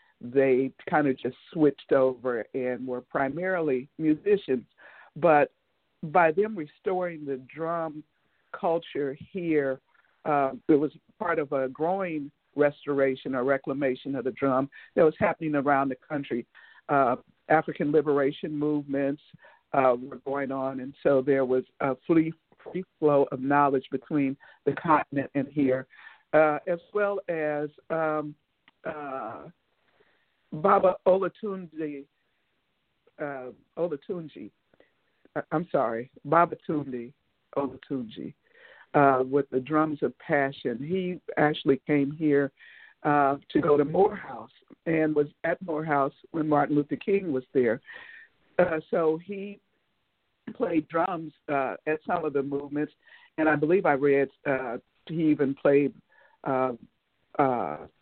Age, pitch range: 50-69, 135-160 Hz